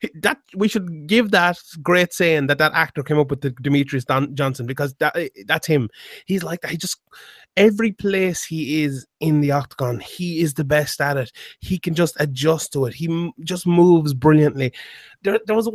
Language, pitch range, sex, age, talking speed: English, 145-185 Hz, male, 30-49, 200 wpm